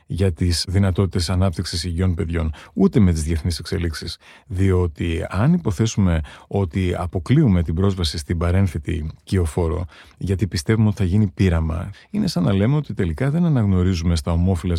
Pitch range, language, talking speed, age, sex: 85-110 Hz, Greek, 150 wpm, 30-49, male